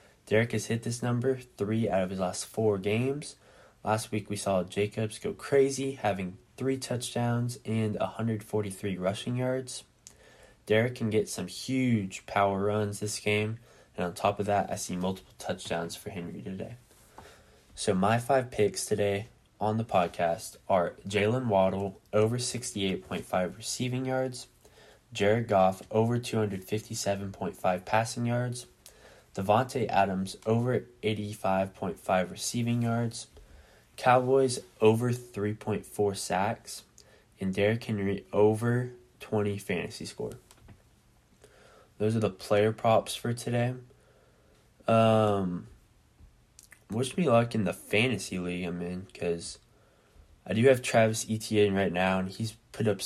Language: English